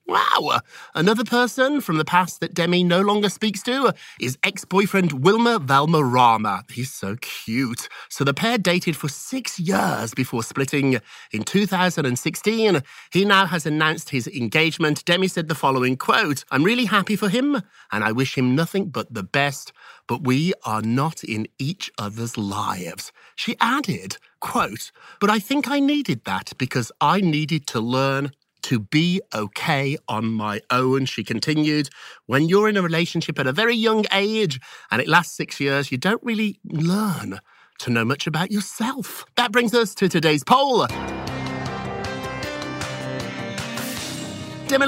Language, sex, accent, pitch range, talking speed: English, male, British, 130-200 Hz, 155 wpm